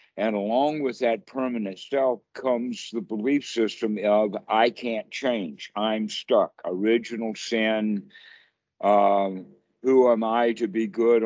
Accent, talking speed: American, 135 wpm